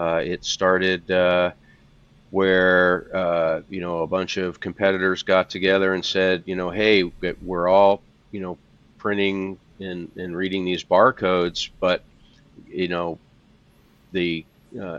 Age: 40-59